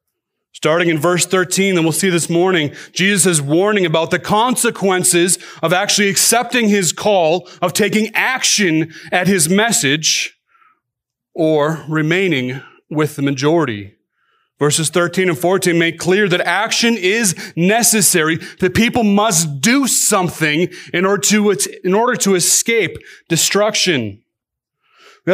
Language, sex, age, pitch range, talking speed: English, male, 30-49, 155-205 Hz, 130 wpm